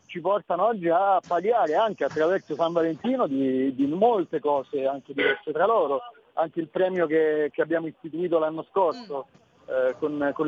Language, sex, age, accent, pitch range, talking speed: Italian, male, 40-59, native, 145-180 Hz, 165 wpm